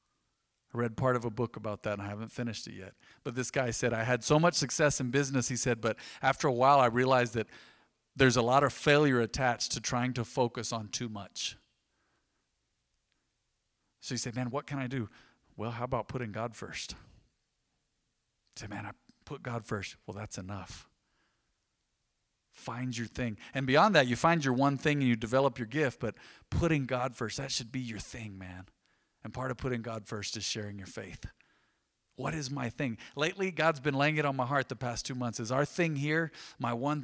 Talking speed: 210 wpm